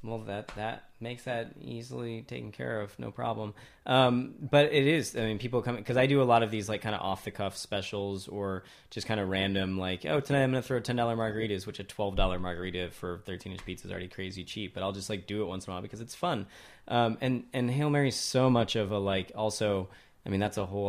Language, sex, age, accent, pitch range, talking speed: English, male, 20-39, American, 95-110 Hz, 255 wpm